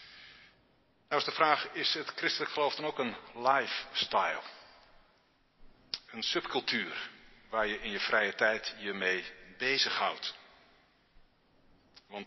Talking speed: 115 wpm